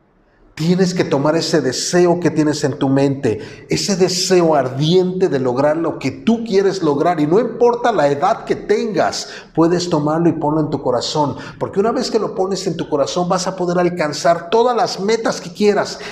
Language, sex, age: Spanish, male, 50-69